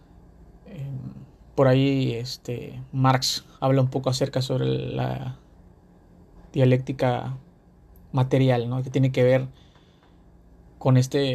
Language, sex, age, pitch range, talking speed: Spanish, male, 30-49, 120-140 Hz, 100 wpm